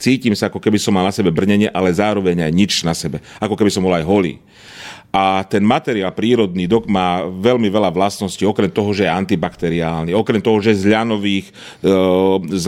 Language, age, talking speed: Slovak, 40-59, 190 wpm